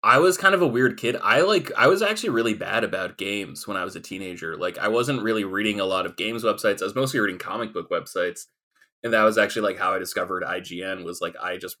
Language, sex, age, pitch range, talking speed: English, male, 20-39, 100-125 Hz, 260 wpm